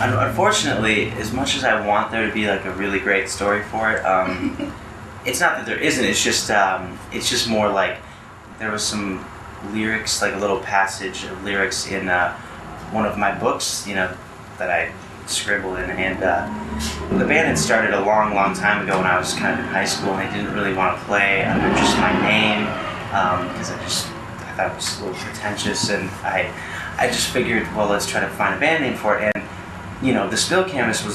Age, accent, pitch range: 30-49, American, 95-105 Hz